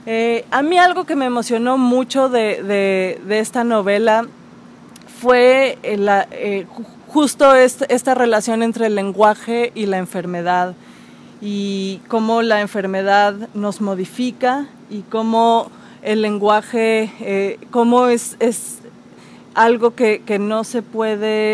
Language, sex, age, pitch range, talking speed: Spanish, female, 20-39, 200-235 Hz, 130 wpm